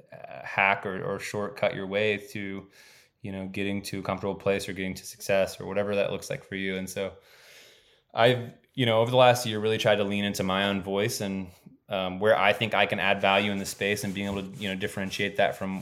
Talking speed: 240 wpm